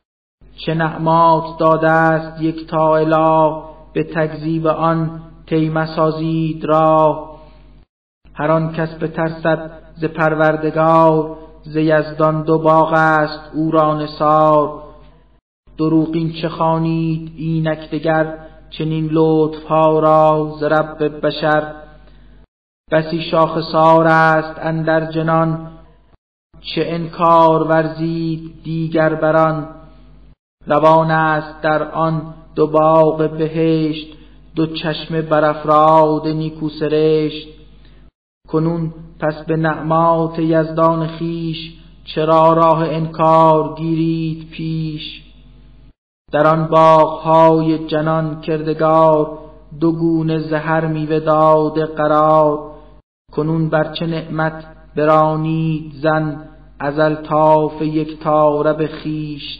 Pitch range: 155-160 Hz